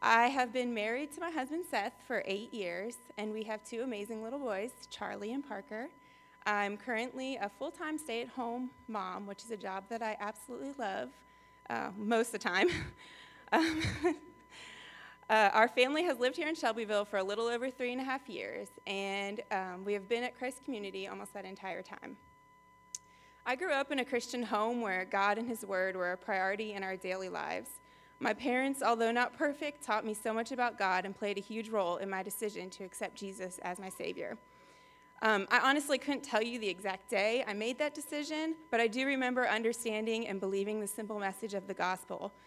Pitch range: 200-250 Hz